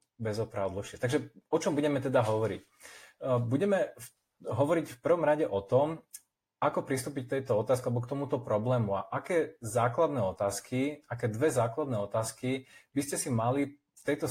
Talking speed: 155 wpm